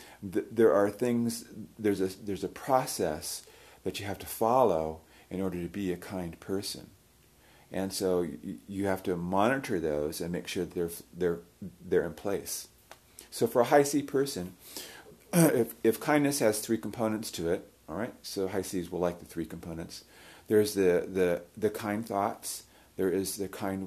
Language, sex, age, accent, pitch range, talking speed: English, male, 40-59, American, 85-105 Hz, 175 wpm